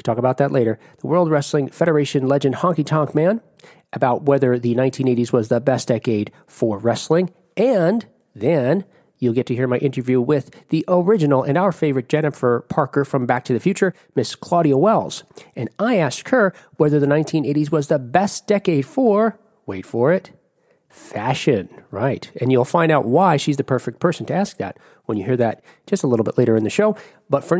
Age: 40-59